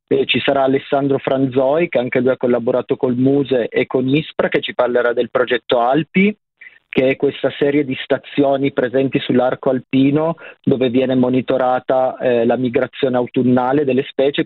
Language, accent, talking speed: Italian, native, 160 wpm